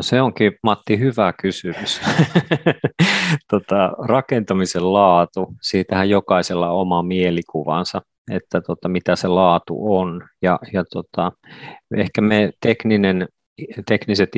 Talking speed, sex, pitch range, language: 115 wpm, male, 90-95 Hz, Finnish